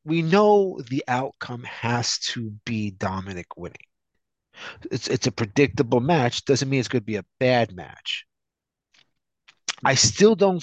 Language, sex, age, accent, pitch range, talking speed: English, male, 30-49, American, 110-150 Hz, 145 wpm